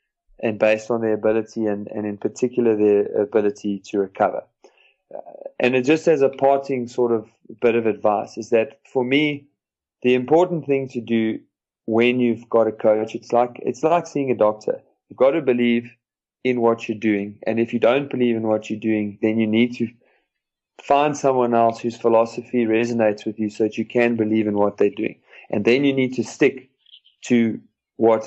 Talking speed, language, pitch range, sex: 195 wpm, English, 110-125 Hz, male